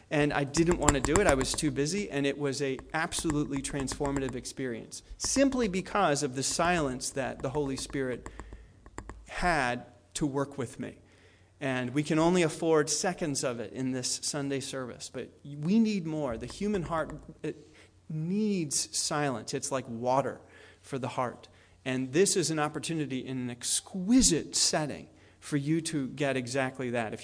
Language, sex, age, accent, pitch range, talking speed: English, male, 30-49, American, 130-165 Hz, 165 wpm